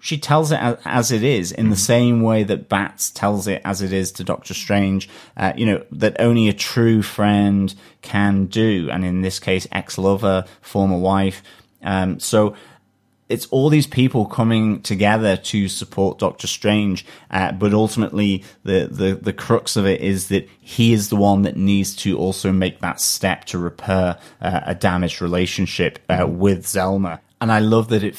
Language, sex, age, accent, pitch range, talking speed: English, male, 30-49, British, 100-115 Hz, 180 wpm